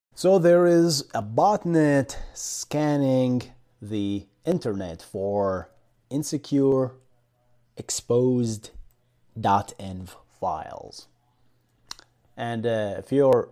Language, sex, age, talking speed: English, male, 30-49, 75 wpm